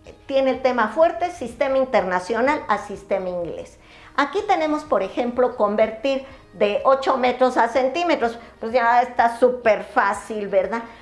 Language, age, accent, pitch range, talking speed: Spanish, 50-69, American, 215-270 Hz, 135 wpm